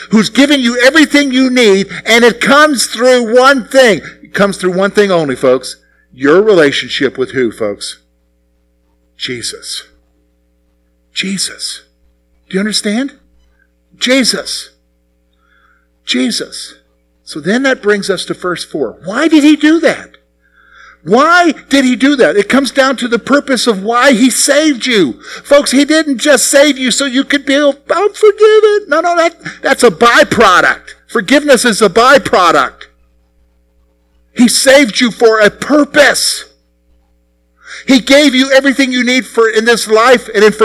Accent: American